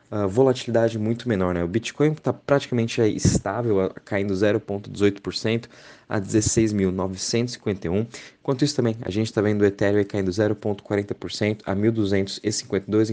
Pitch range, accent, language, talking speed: 95-110 Hz, Brazilian, Portuguese, 135 wpm